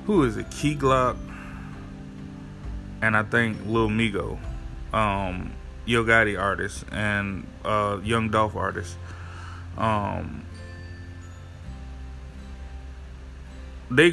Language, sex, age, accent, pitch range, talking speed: English, male, 20-39, American, 85-130 Hz, 85 wpm